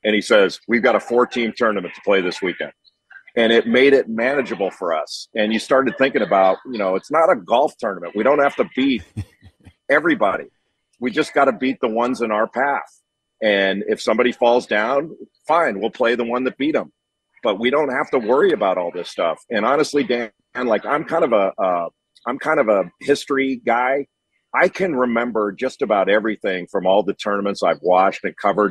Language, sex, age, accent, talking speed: English, male, 40-59, American, 200 wpm